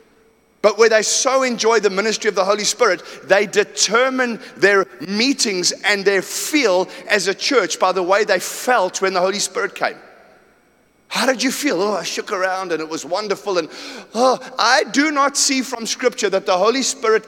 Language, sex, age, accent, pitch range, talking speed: English, male, 30-49, British, 195-250 Hz, 190 wpm